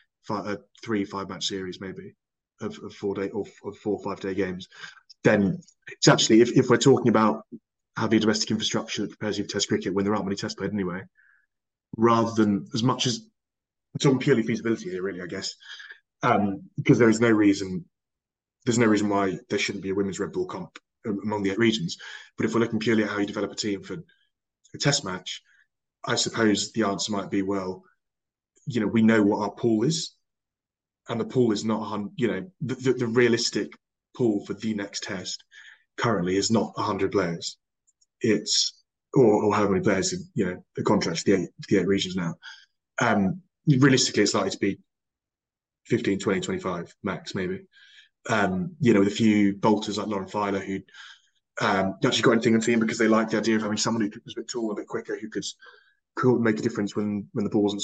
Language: English